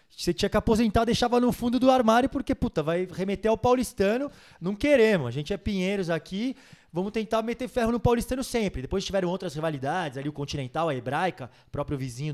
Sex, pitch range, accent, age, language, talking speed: male, 160-230 Hz, Brazilian, 20-39, Portuguese, 195 wpm